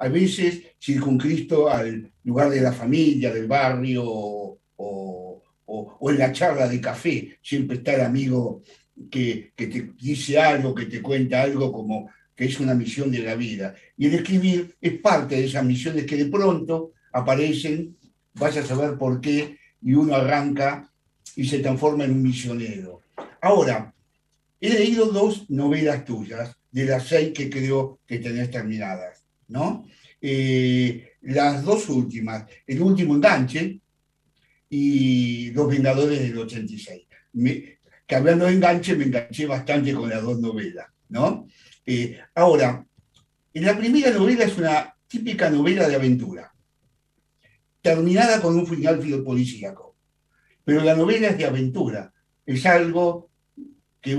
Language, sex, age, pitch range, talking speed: Spanish, male, 50-69, 125-160 Hz, 145 wpm